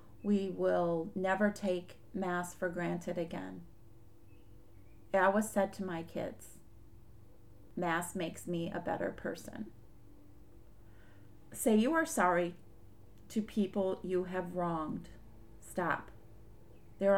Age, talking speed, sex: 40-59, 110 wpm, female